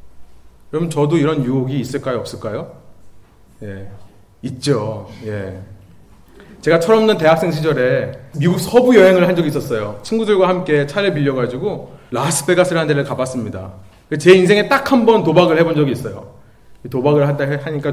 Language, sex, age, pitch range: Korean, male, 30-49, 125-185 Hz